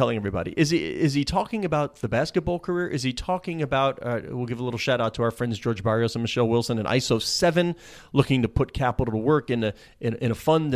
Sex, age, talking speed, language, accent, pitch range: male, 30-49, 250 wpm, English, American, 125-175 Hz